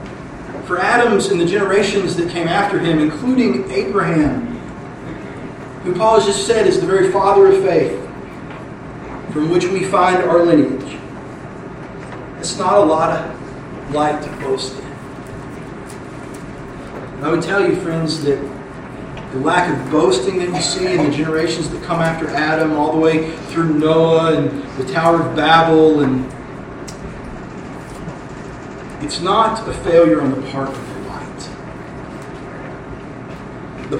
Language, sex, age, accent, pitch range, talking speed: English, male, 40-59, American, 140-185 Hz, 140 wpm